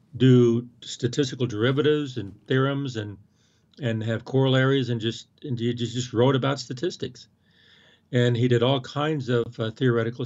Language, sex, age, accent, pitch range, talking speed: English, male, 50-69, American, 115-135 Hz, 135 wpm